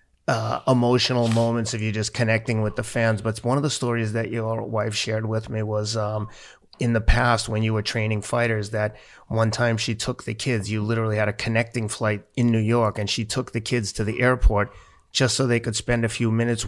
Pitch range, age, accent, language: 105-115 Hz, 30-49, American, English